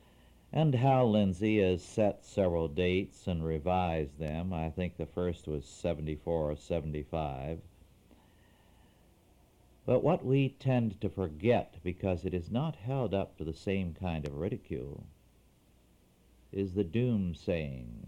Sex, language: male, English